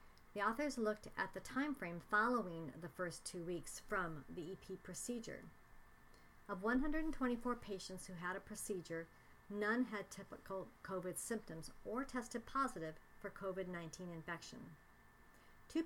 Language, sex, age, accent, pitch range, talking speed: English, male, 50-69, American, 165-215 Hz, 130 wpm